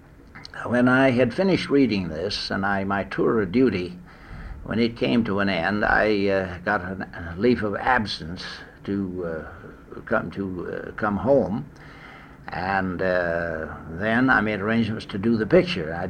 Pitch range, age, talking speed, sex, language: 90-120 Hz, 60-79, 165 wpm, male, English